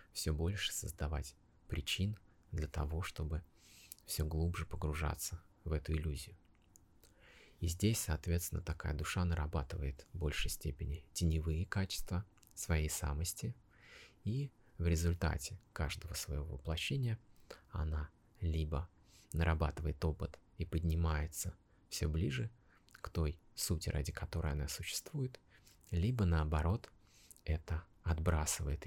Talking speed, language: 105 wpm, Russian